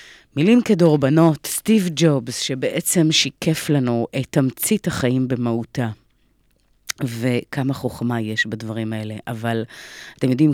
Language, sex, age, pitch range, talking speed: Hebrew, female, 30-49, 110-140 Hz, 110 wpm